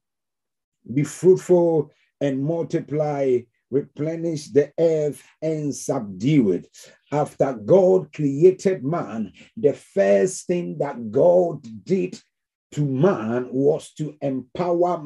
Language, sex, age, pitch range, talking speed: English, male, 50-69, 145-180 Hz, 100 wpm